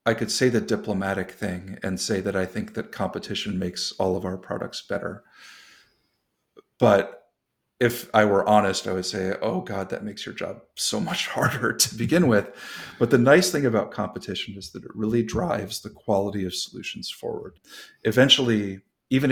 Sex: male